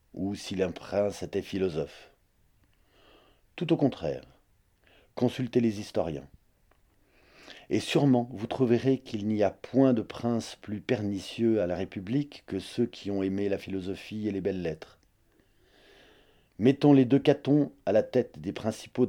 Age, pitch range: 40-59, 95-125 Hz